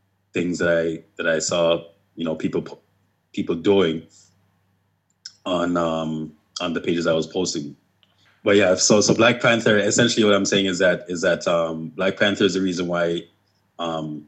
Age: 20-39